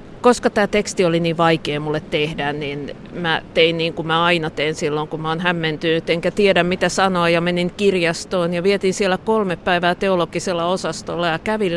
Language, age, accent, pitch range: Finnish, 50-69, native, 165-190 Hz